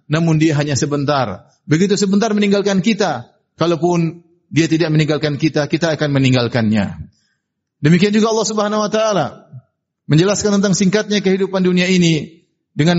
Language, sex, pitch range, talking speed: Indonesian, male, 155-190 Hz, 135 wpm